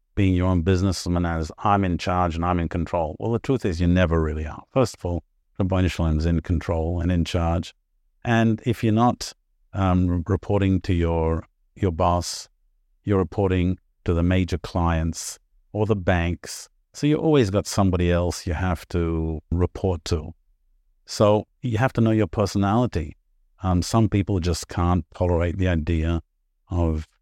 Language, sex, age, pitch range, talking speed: English, male, 50-69, 85-95 Hz, 170 wpm